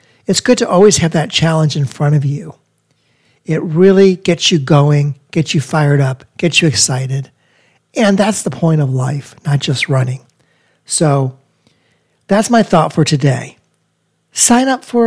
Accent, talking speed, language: American, 165 wpm, English